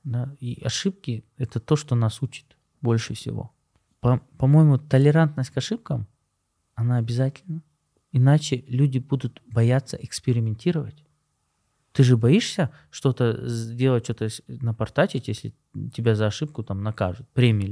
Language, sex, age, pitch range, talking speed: Russian, male, 20-39, 110-140 Hz, 110 wpm